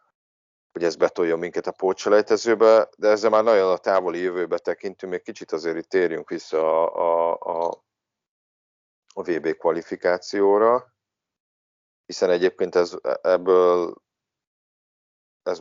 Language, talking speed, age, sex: Hungarian, 115 wpm, 30-49, male